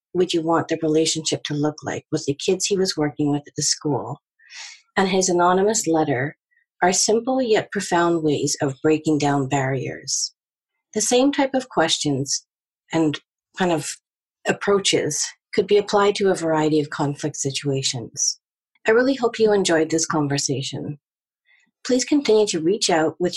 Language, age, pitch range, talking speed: English, 40-59, 150-205 Hz, 160 wpm